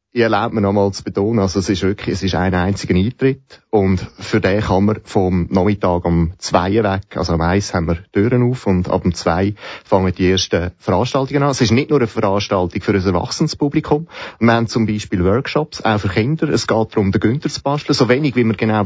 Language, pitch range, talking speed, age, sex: German, 100-125 Hz, 230 wpm, 30-49, male